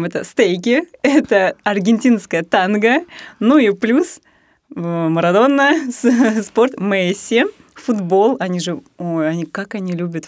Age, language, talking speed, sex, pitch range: 20-39, Russian, 110 wpm, female, 165-210 Hz